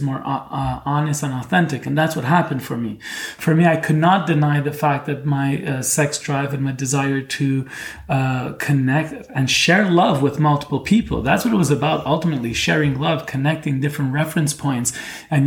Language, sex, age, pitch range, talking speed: English, male, 30-49, 130-150 Hz, 185 wpm